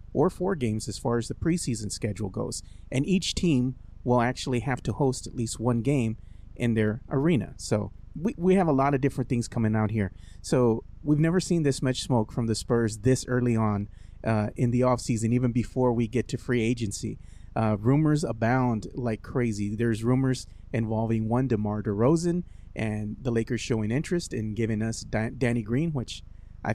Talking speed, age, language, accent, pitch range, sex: 190 wpm, 30-49, English, American, 110-140 Hz, male